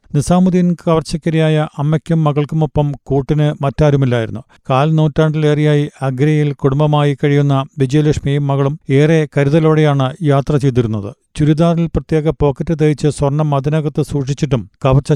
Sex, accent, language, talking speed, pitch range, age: male, native, Malayalam, 100 wpm, 140-155 Hz, 40-59